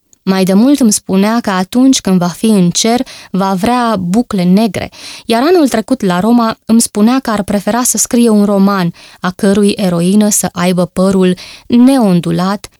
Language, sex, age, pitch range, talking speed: Romanian, female, 20-39, 175-230 Hz, 175 wpm